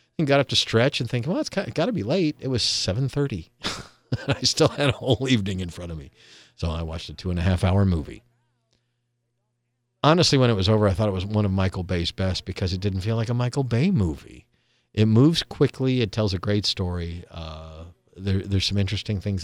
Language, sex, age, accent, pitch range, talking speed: English, male, 50-69, American, 90-120 Hz, 215 wpm